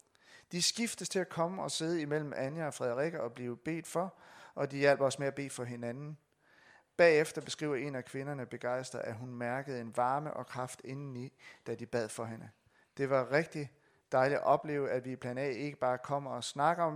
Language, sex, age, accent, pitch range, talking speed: Danish, male, 30-49, native, 125-150 Hz, 210 wpm